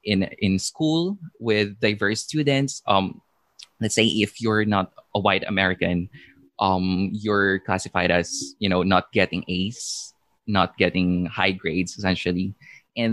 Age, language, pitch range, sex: 20-39, Filipino, 95-110 Hz, male